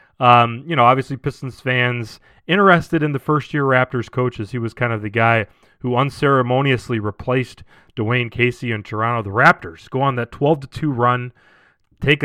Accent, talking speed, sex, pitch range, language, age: American, 160 wpm, male, 120-150 Hz, English, 30-49